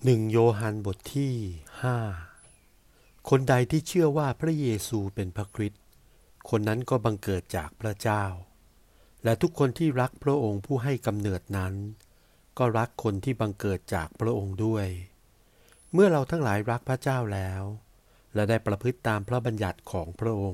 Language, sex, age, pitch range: Thai, male, 60-79, 95-125 Hz